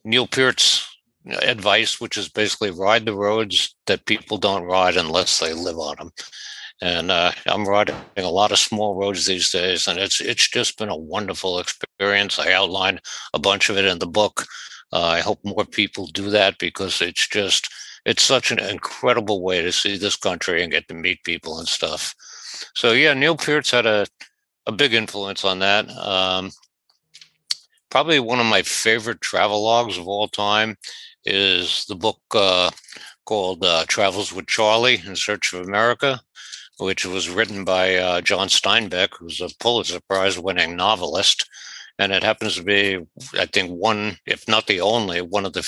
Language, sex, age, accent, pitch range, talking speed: English, male, 60-79, American, 95-110 Hz, 175 wpm